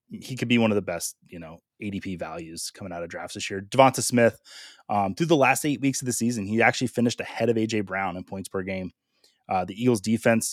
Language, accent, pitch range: English, American, 90-120 Hz